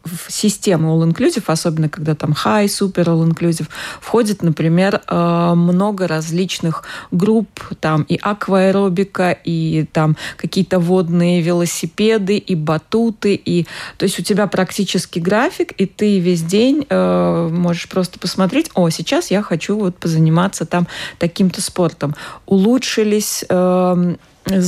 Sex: female